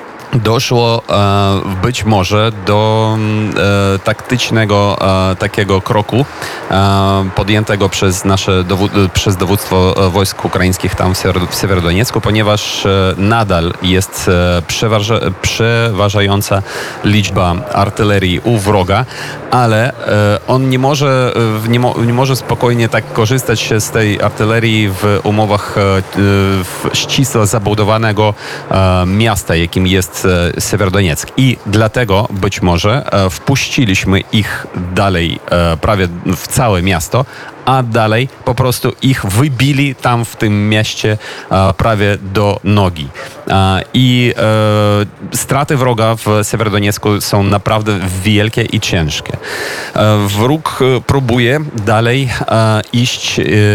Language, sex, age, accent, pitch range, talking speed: Polish, male, 30-49, native, 100-115 Hz, 110 wpm